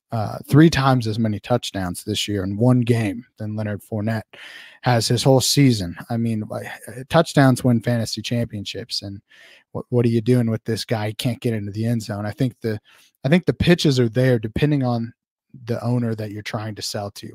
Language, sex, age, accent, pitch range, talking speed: English, male, 30-49, American, 115-130 Hz, 205 wpm